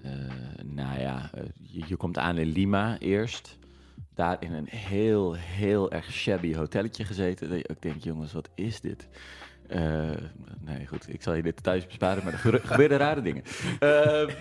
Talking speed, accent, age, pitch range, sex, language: 170 wpm, Dutch, 40-59, 80-105 Hz, male, Dutch